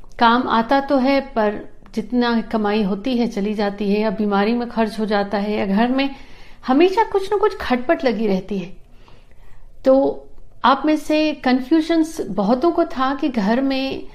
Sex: female